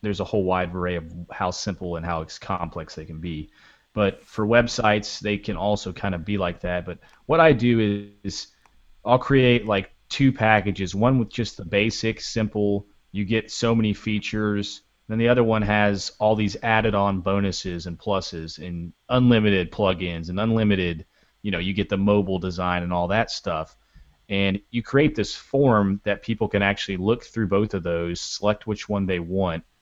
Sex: male